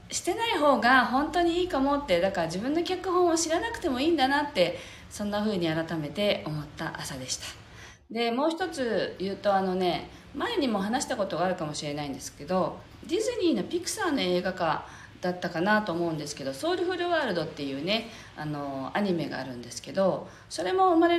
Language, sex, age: Japanese, female, 40-59